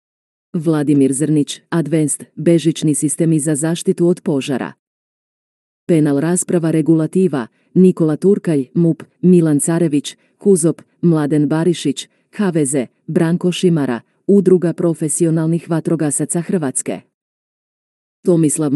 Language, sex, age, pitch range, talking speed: Croatian, female, 40-59, 150-175 Hz, 90 wpm